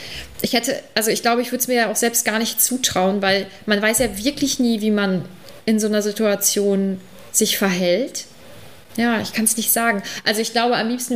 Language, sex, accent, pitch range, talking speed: German, female, German, 200-235 Hz, 215 wpm